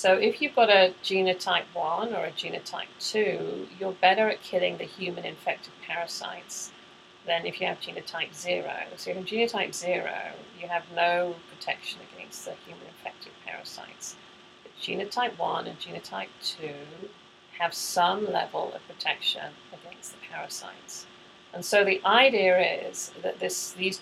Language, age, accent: English, 40-59, British